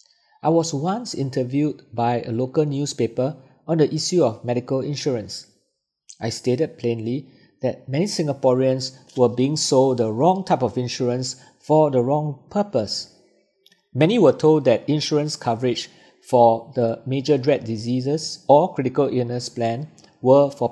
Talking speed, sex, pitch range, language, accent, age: 140 wpm, male, 125-150 Hz, English, Malaysian, 50-69